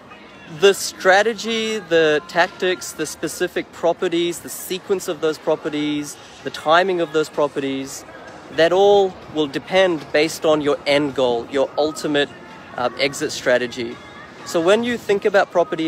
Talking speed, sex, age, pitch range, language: 140 wpm, male, 30-49, 135-165 Hz, English